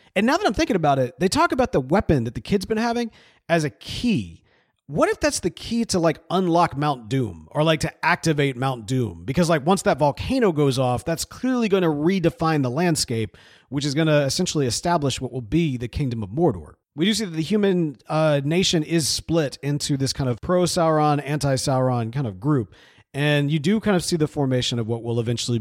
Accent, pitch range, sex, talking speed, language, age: American, 130-175 Hz, male, 220 wpm, English, 40-59